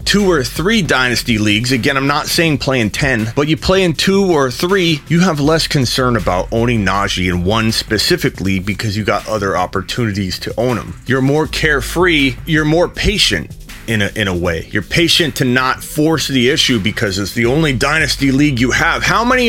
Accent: American